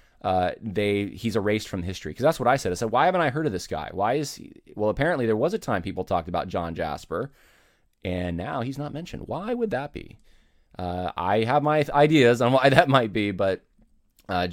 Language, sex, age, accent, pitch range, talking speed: English, male, 20-39, American, 90-120 Hz, 230 wpm